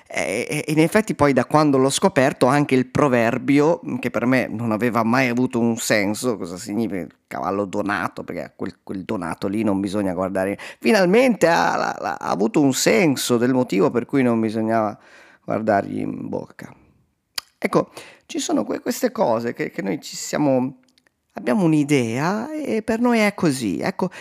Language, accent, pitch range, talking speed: Italian, native, 115-170 Hz, 170 wpm